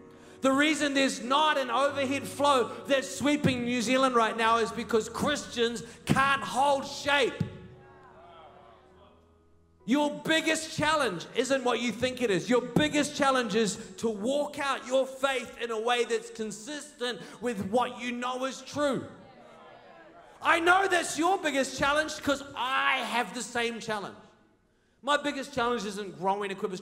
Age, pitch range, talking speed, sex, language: 30-49, 195-250 Hz, 150 wpm, male, English